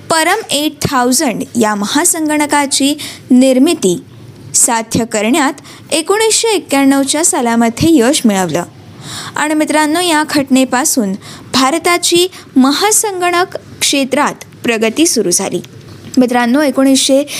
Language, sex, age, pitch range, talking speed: Marathi, female, 20-39, 240-320 Hz, 85 wpm